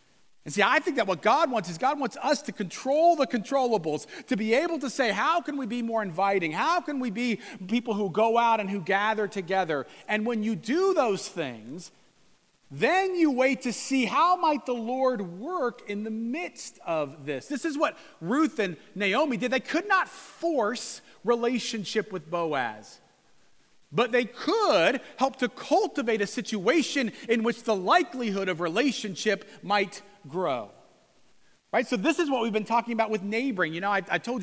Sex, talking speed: male, 185 wpm